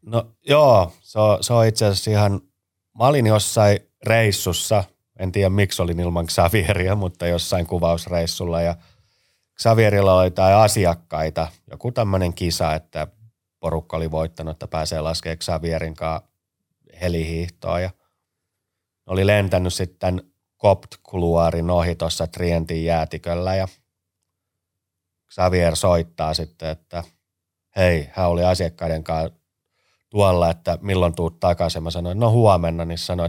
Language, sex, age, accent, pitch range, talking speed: Finnish, male, 30-49, native, 85-95 Hz, 115 wpm